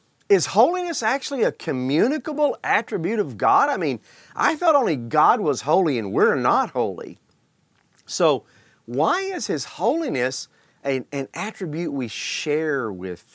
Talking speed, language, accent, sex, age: 140 wpm, English, American, male, 40-59